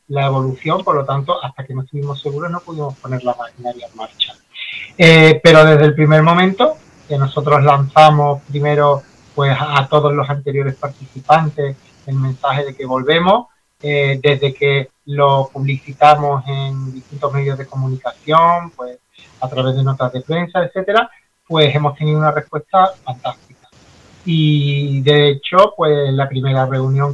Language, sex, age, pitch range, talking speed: Spanish, male, 30-49, 140-155 Hz, 155 wpm